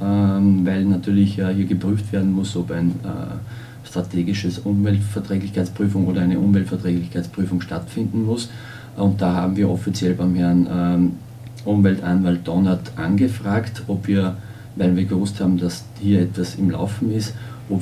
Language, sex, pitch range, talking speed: German, male, 95-110 Hz, 130 wpm